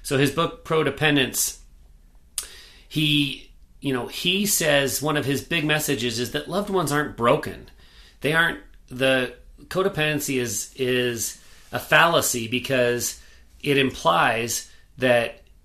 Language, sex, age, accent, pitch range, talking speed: English, male, 40-59, American, 115-135 Hz, 125 wpm